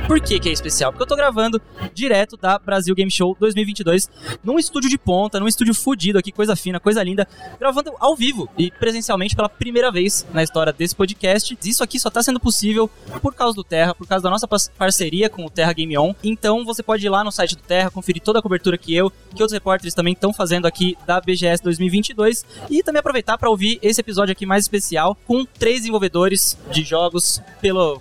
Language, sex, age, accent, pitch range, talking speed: Portuguese, male, 20-39, Brazilian, 170-215 Hz, 215 wpm